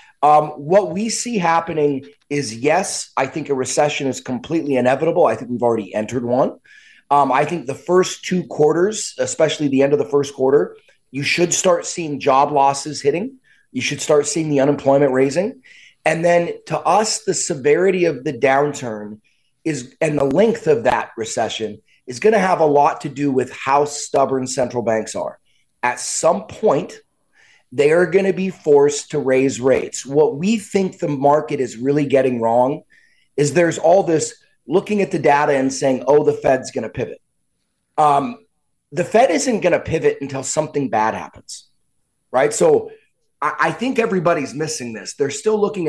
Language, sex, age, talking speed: English, male, 30-49, 180 wpm